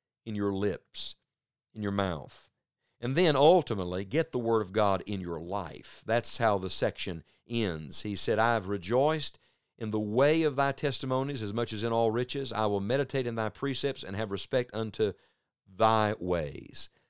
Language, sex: English, male